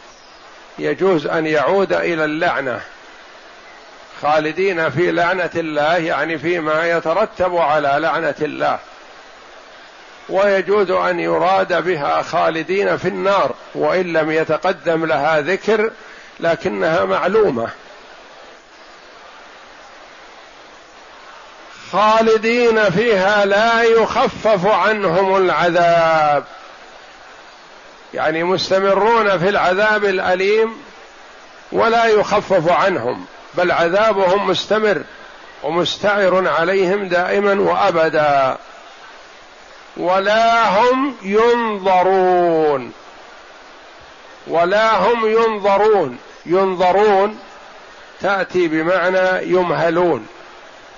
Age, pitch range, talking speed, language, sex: 50-69, 170-210 Hz, 70 wpm, Arabic, male